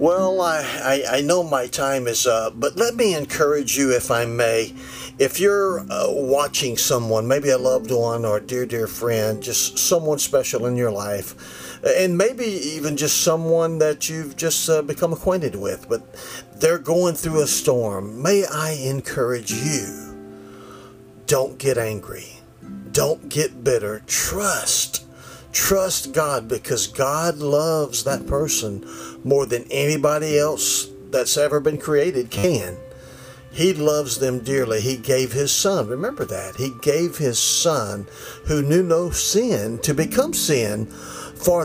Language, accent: English, American